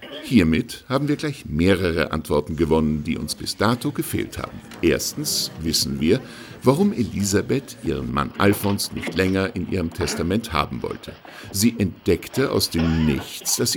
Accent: German